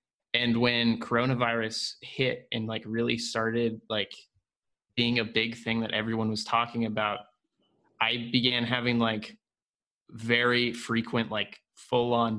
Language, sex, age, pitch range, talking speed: English, male, 20-39, 110-125 Hz, 125 wpm